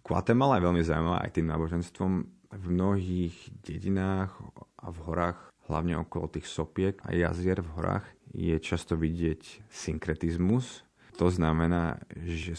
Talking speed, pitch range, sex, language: 135 wpm, 80-95 Hz, male, Slovak